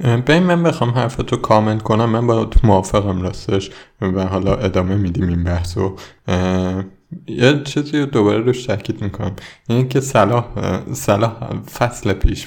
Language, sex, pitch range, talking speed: Persian, male, 95-125 Hz, 145 wpm